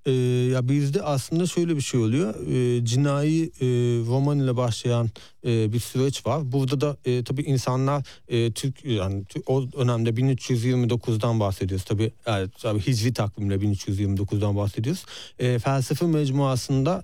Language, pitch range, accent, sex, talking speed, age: Turkish, 120-150 Hz, native, male, 140 wpm, 40-59